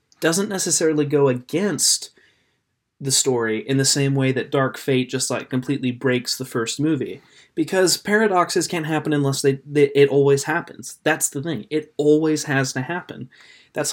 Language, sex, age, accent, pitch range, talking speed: English, male, 30-49, American, 135-160 Hz, 170 wpm